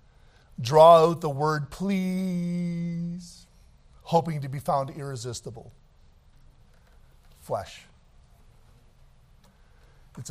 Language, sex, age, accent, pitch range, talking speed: English, male, 50-69, American, 110-180 Hz, 70 wpm